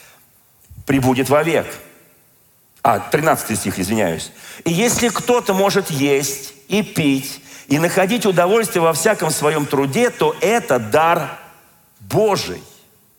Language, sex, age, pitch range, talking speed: Russian, male, 40-59, 155-210 Hz, 115 wpm